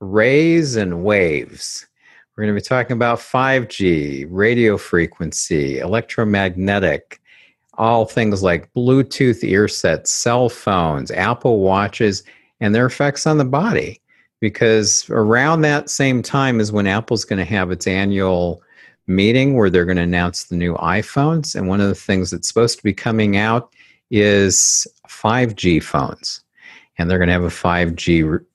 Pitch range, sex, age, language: 90-120 Hz, male, 50-69, English